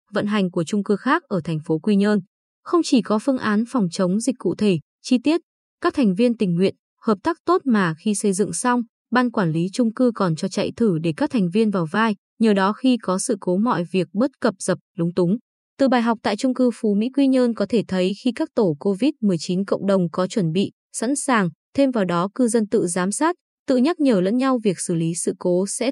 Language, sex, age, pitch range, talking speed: Vietnamese, female, 20-39, 190-255 Hz, 250 wpm